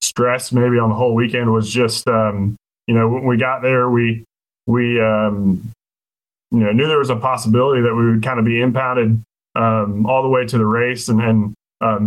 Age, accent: 20-39, American